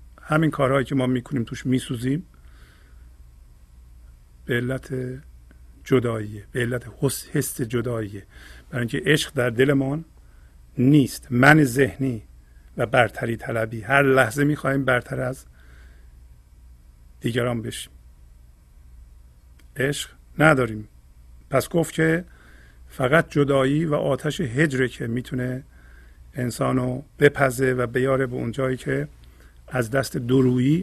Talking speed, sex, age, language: 105 wpm, male, 50-69, Persian